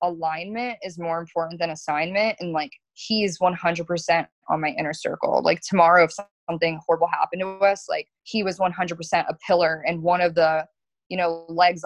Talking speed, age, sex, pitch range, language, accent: 175 wpm, 20-39, female, 165-200 Hz, English, American